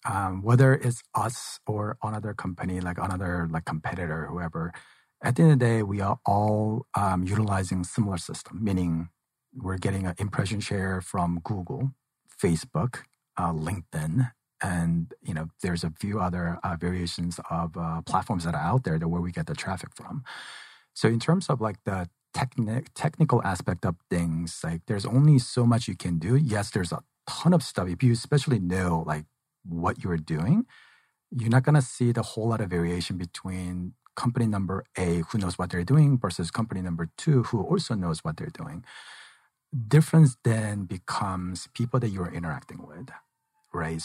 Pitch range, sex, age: 85-120 Hz, male, 40-59